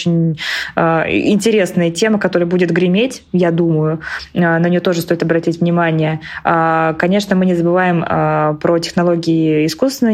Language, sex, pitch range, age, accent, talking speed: Russian, female, 170-195 Hz, 20-39, native, 125 wpm